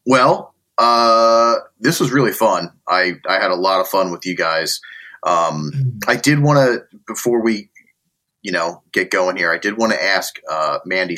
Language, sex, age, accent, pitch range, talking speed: English, male, 30-49, American, 100-140 Hz, 190 wpm